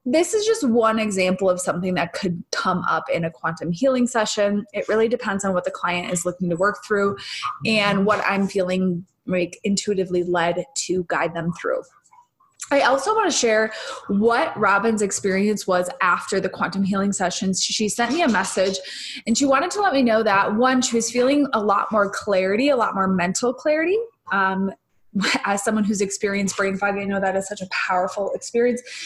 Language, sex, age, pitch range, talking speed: English, female, 20-39, 185-225 Hz, 195 wpm